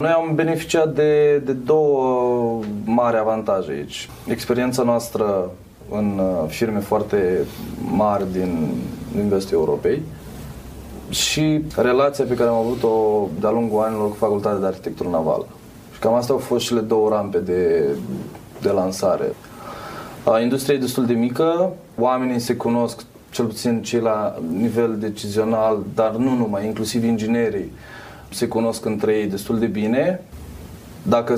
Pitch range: 105-125 Hz